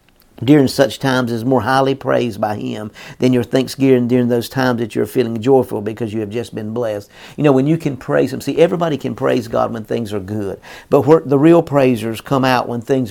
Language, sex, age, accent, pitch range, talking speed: English, male, 50-69, American, 120-140 Hz, 225 wpm